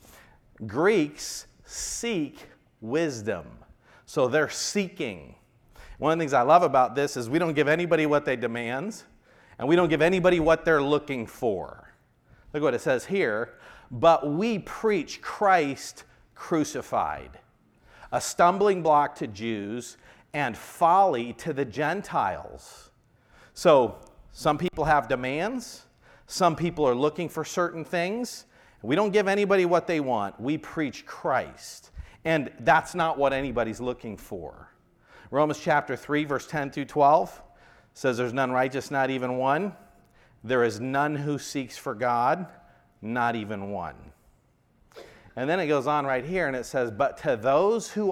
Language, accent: English, American